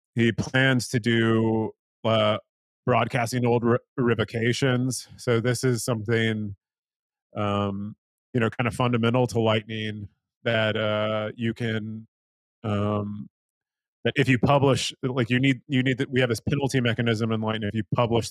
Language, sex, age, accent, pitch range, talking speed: English, male, 30-49, American, 105-120 Hz, 150 wpm